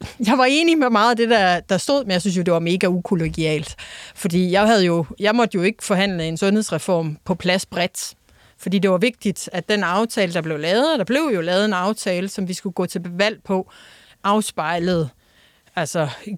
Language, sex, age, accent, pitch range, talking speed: Danish, female, 30-49, native, 180-215 Hz, 205 wpm